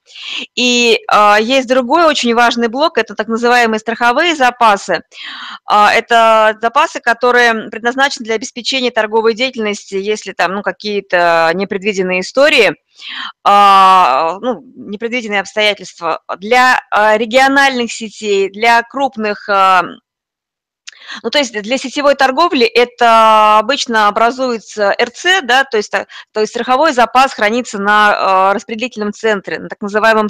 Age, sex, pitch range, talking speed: 20-39, female, 200-245 Hz, 110 wpm